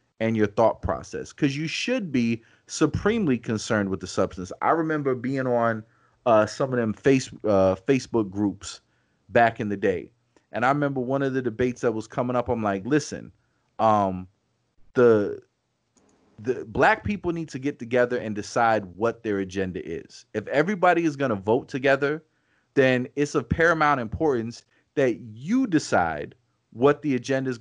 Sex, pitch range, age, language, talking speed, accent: male, 110-150 Hz, 30-49, English, 165 wpm, American